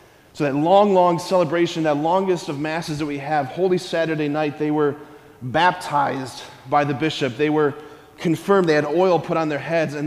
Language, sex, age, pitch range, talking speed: English, male, 30-49, 145-190 Hz, 190 wpm